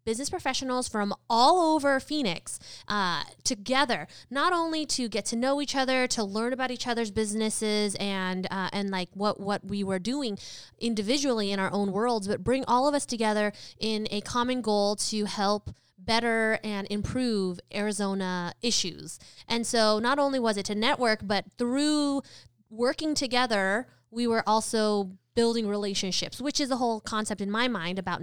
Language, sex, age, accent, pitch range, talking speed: English, female, 20-39, American, 200-245 Hz, 170 wpm